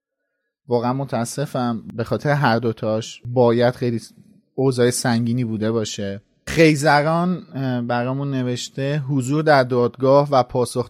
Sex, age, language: male, 30-49, Persian